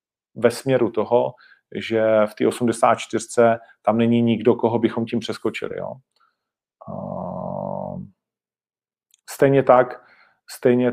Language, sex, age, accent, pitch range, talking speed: Czech, male, 40-59, native, 110-130 Hz, 105 wpm